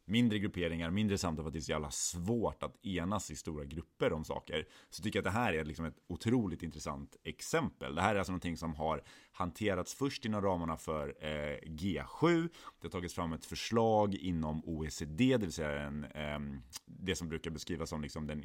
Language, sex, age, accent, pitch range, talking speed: English, male, 30-49, Swedish, 80-105 Hz, 185 wpm